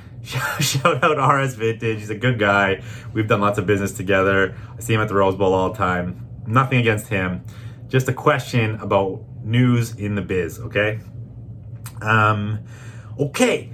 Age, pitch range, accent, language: 30-49, 110-135 Hz, American, English